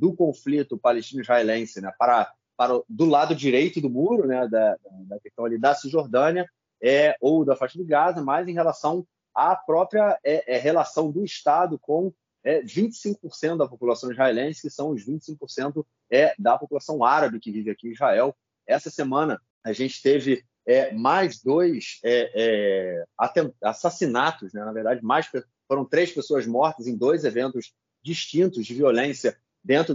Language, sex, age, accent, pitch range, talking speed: Portuguese, male, 30-49, Brazilian, 120-165 Hz, 160 wpm